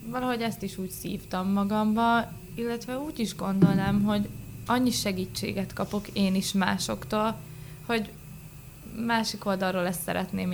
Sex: female